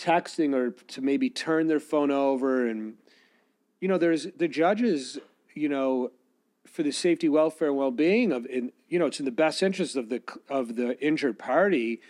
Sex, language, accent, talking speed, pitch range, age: male, English, American, 185 wpm, 145-225 Hz, 40-59